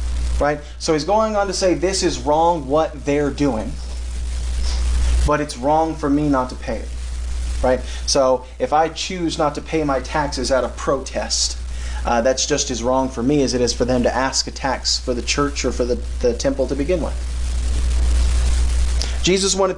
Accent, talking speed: American, 195 wpm